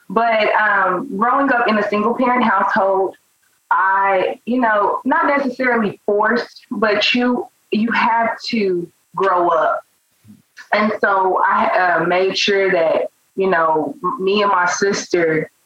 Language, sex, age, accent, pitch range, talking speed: English, female, 20-39, American, 185-245 Hz, 135 wpm